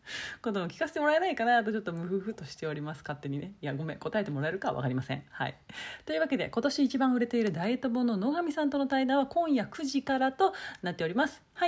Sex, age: female, 40-59